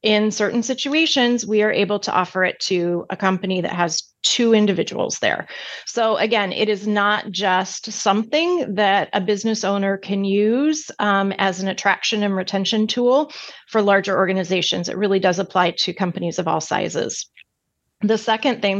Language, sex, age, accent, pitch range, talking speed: English, female, 30-49, American, 190-225 Hz, 165 wpm